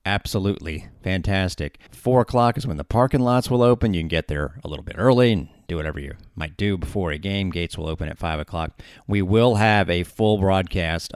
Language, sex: English, male